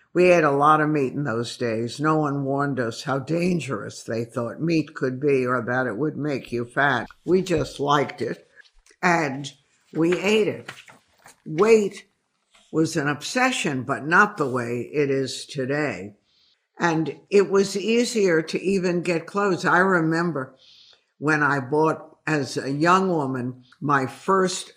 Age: 60-79